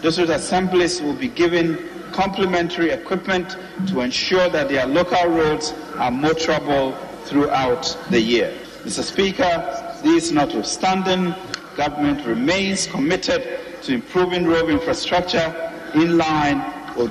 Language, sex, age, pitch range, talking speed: English, male, 50-69, 145-175 Hz, 115 wpm